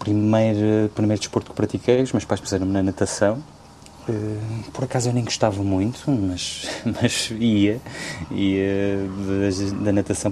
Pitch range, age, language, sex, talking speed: 90-115 Hz, 20-39, Portuguese, male, 145 wpm